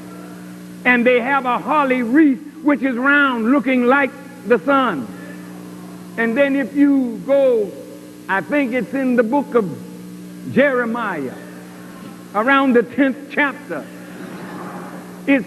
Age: 60-79